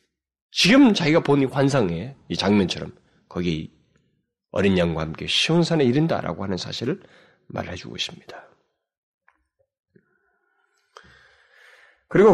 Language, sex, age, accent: Korean, male, 30-49, native